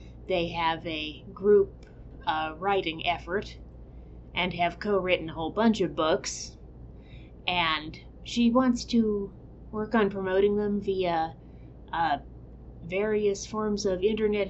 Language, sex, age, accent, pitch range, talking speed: English, female, 30-49, American, 165-210 Hz, 120 wpm